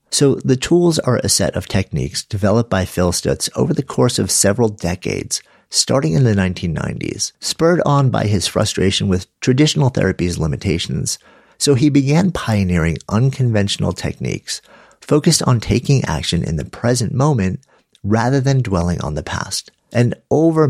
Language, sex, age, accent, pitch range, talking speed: English, male, 50-69, American, 95-130 Hz, 155 wpm